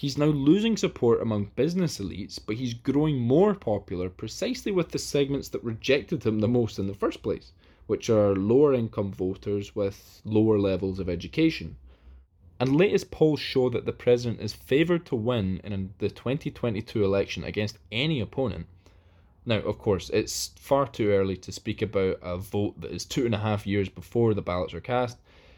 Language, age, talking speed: English, 20-39, 180 wpm